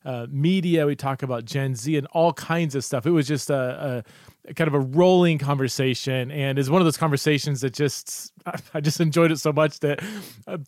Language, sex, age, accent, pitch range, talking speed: English, male, 30-49, American, 130-165 Hz, 225 wpm